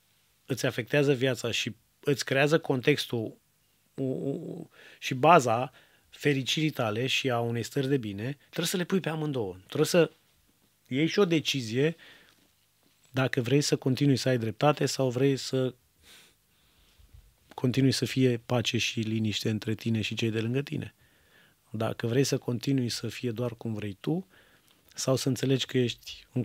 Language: Romanian